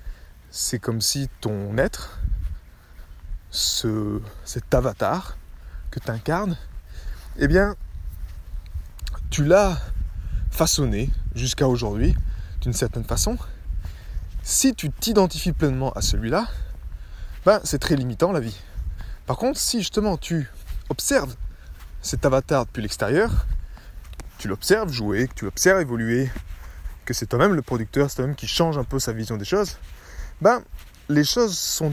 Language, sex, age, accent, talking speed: French, male, 20-39, French, 120 wpm